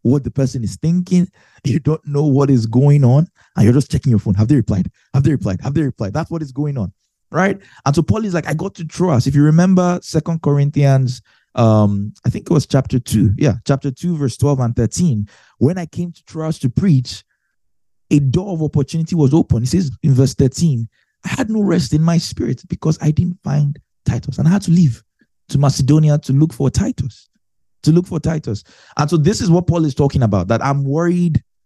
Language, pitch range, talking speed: English, 115-155 Hz, 225 wpm